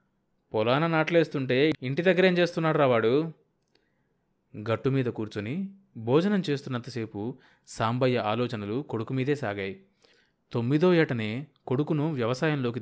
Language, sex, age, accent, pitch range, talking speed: Telugu, male, 30-49, native, 115-155 Hz, 90 wpm